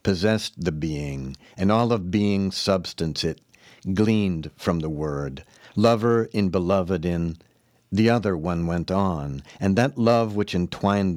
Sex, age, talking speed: male, 60-79, 145 wpm